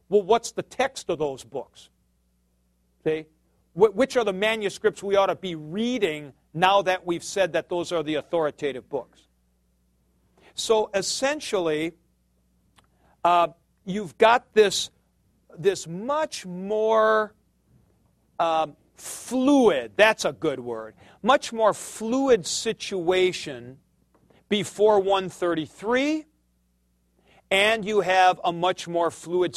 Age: 50-69